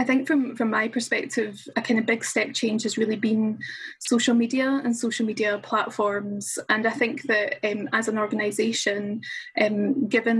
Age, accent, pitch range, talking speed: 10-29, British, 220-245 Hz, 175 wpm